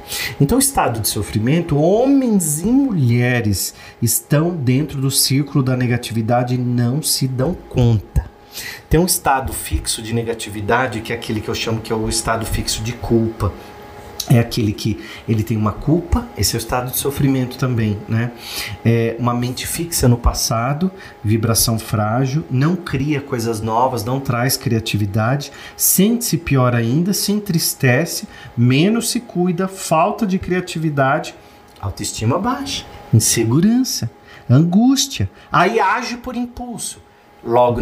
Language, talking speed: Portuguese, 140 wpm